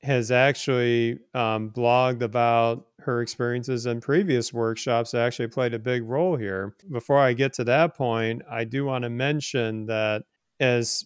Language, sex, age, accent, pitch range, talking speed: English, male, 40-59, American, 110-135 Hz, 165 wpm